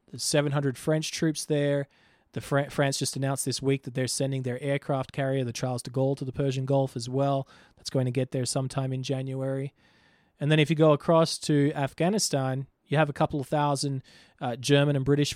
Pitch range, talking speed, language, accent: 135-170 Hz, 210 wpm, English, Australian